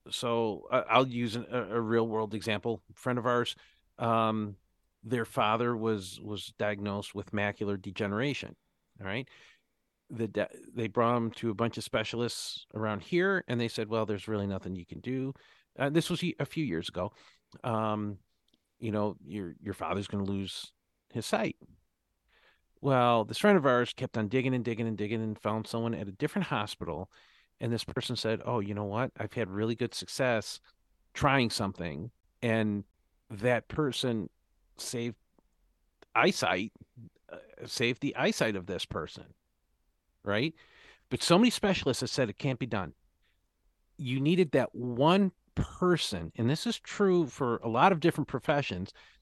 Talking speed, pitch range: 165 wpm, 105-130 Hz